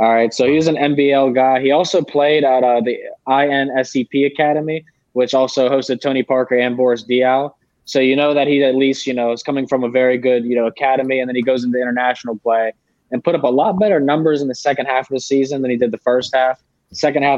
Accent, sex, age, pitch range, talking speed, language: American, male, 20-39, 120-140 Hz, 240 wpm, English